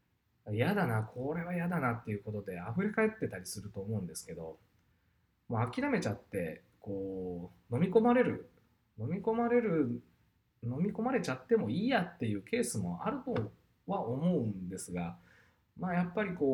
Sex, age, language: male, 20-39, Japanese